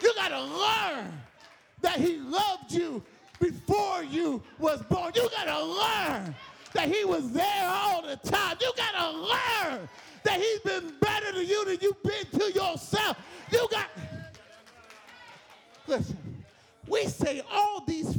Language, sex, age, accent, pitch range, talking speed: English, male, 40-59, American, 310-410 Hz, 150 wpm